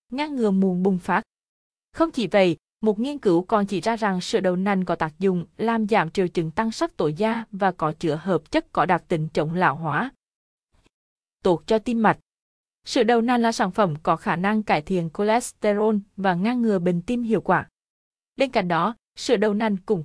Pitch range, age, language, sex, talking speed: 185-240 Hz, 20-39, Vietnamese, female, 210 wpm